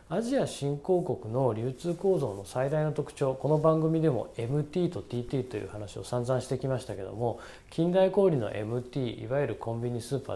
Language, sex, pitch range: Japanese, male, 120-190 Hz